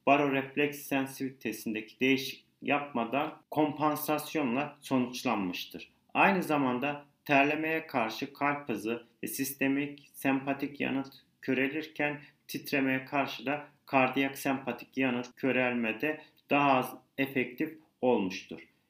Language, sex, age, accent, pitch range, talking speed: Turkish, male, 40-59, native, 125-145 Hz, 90 wpm